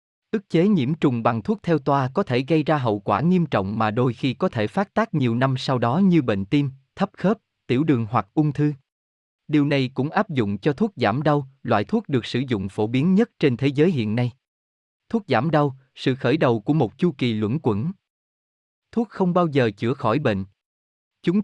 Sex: male